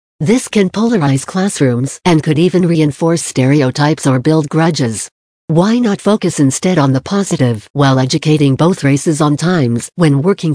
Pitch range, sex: 135-180 Hz, female